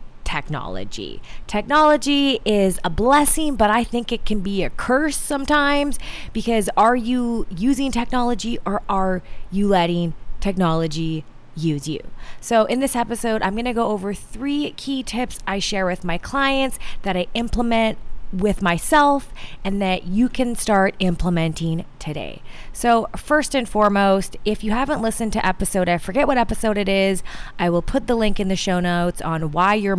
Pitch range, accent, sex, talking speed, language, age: 170-230 Hz, American, female, 165 wpm, English, 20-39